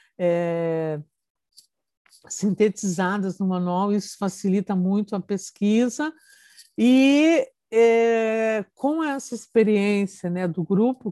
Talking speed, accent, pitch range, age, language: 80 wpm, Brazilian, 175-220 Hz, 50-69, Portuguese